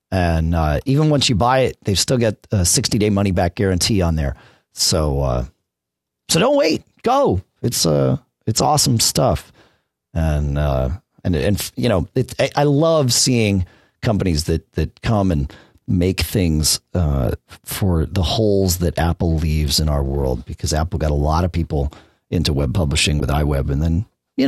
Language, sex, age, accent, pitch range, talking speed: English, male, 40-59, American, 75-120 Hz, 175 wpm